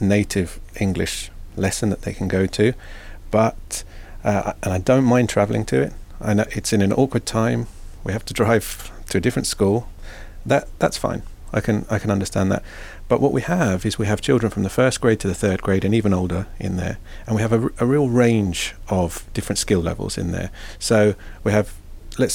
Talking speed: 215 wpm